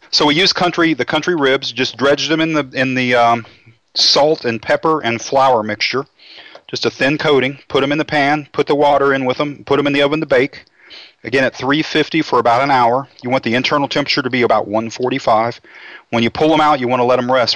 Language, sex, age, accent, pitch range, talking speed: English, male, 40-59, American, 115-145 Hz, 240 wpm